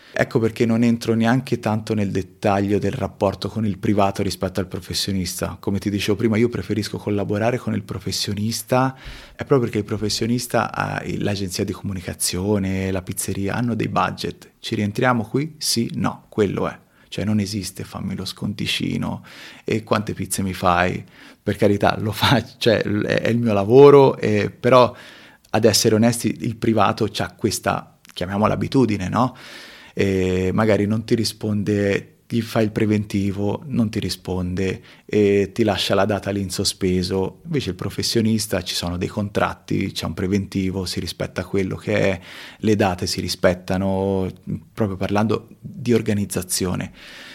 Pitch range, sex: 95-115 Hz, male